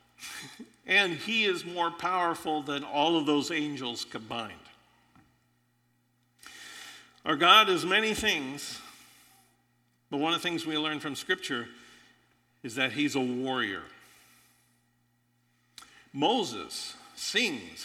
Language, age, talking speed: English, 50-69, 110 wpm